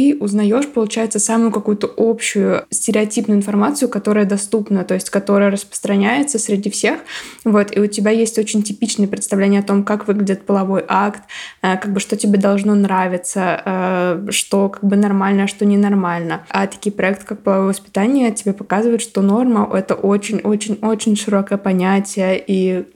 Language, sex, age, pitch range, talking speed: Russian, female, 20-39, 195-220 Hz, 155 wpm